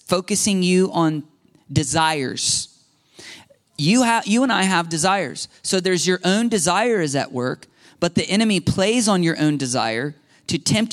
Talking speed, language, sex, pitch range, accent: 155 wpm, English, male, 145-185 Hz, American